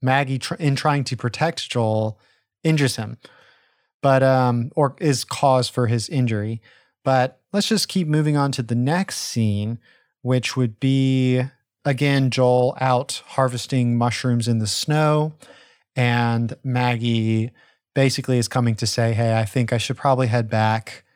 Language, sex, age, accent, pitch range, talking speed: English, male, 30-49, American, 115-135 Hz, 145 wpm